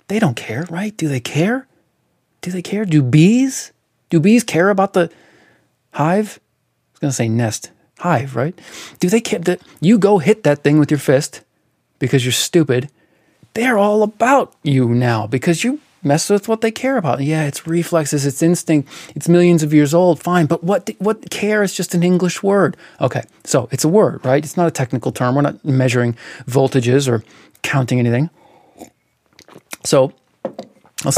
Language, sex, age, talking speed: English, male, 30-49, 180 wpm